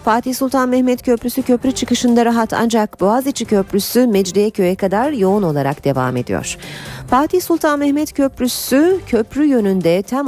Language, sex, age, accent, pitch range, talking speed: Turkish, female, 40-59, native, 160-230 Hz, 140 wpm